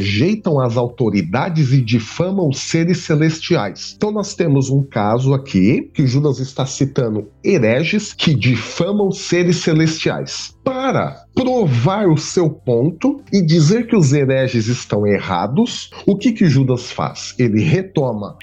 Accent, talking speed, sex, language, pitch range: Brazilian, 135 wpm, male, Portuguese, 125-180 Hz